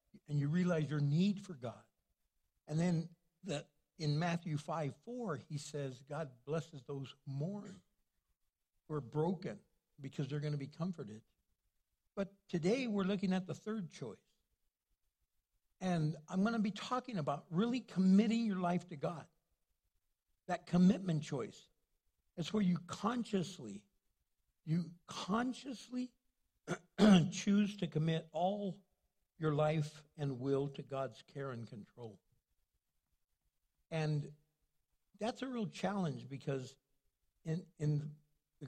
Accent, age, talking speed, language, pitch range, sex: American, 60-79, 125 wpm, English, 135-180 Hz, male